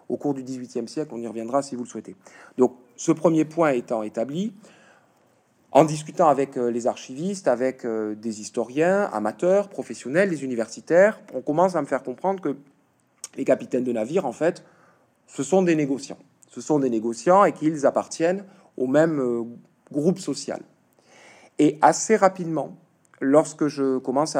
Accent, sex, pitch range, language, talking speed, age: French, male, 130-185 Hz, French, 155 wpm, 40-59